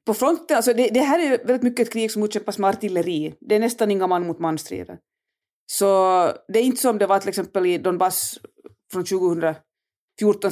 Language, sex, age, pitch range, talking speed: Swedish, female, 30-49, 175-230 Hz, 200 wpm